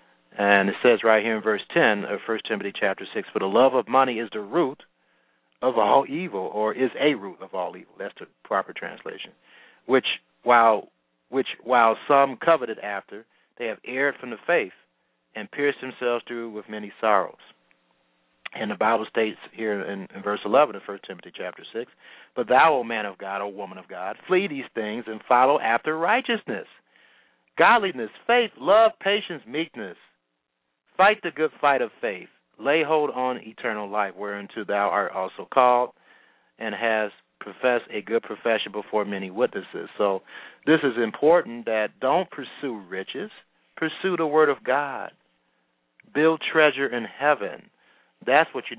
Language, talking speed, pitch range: English, 165 wpm, 100-130 Hz